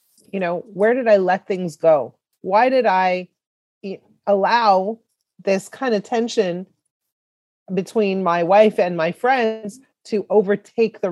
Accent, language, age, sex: American, English, 30-49, female